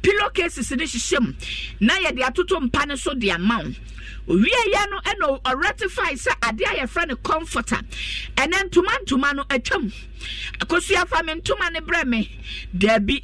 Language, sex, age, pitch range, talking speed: English, female, 50-69, 255-365 Hz, 190 wpm